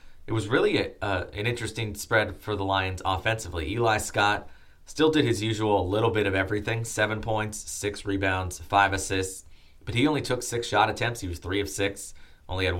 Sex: male